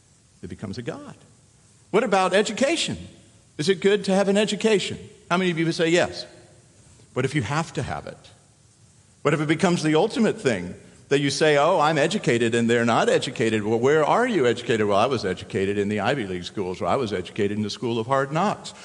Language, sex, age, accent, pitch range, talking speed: English, male, 50-69, American, 110-165 Hz, 220 wpm